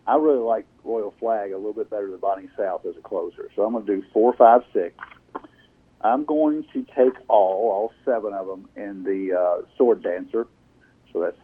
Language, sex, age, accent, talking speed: English, male, 50-69, American, 205 wpm